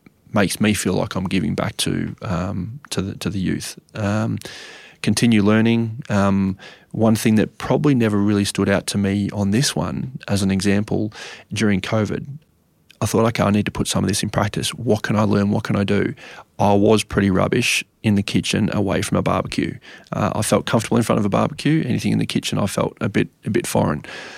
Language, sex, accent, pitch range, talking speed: English, male, Australian, 100-110 Hz, 215 wpm